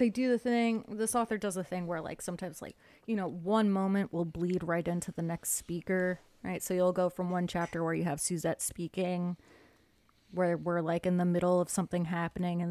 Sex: female